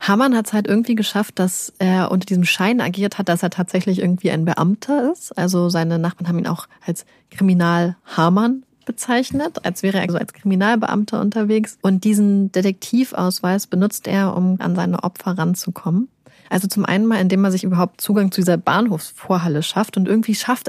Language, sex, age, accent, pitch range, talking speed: German, female, 30-49, German, 180-215 Hz, 185 wpm